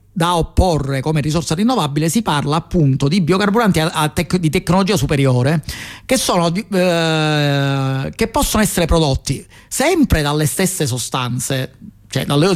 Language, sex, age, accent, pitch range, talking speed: Italian, male, 40-59, native, 140-165 Hz, 135 wpm